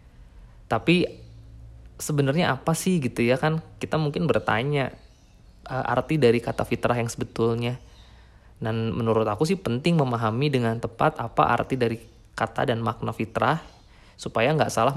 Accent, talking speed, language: native, 135 wpm, Indonesian